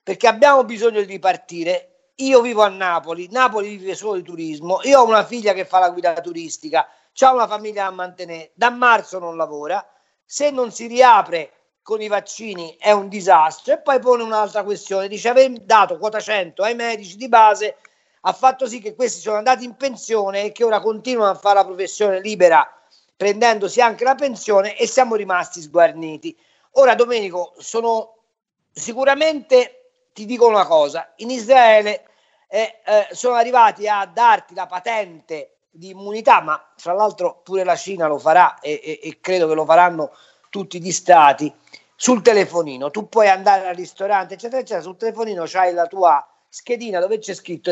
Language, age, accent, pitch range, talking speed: Italian, 40-59, native, 180-240 Hz, 175 wpm